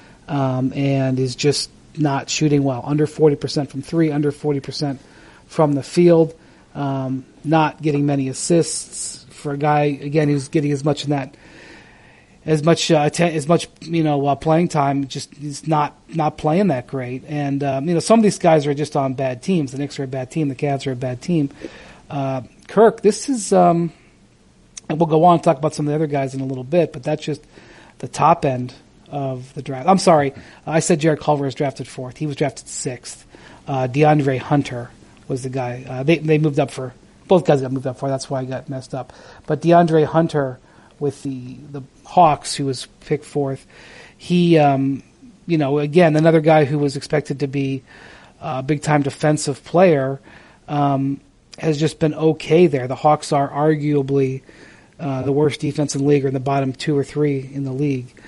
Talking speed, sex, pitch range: 205 wpm, male, 135-155 Hz